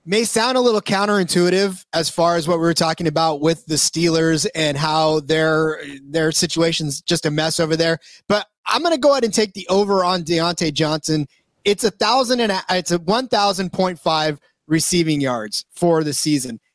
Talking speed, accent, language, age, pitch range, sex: 195 wpm, American, English, 30-49, 160-195 Hz, male